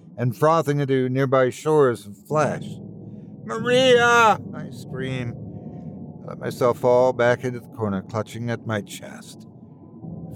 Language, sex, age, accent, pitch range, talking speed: English, male, 60-79, American, 110-150 Hz, 135 wpm